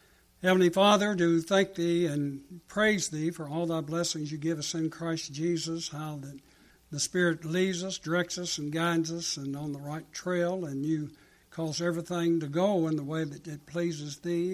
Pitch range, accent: 150-175 Hz, American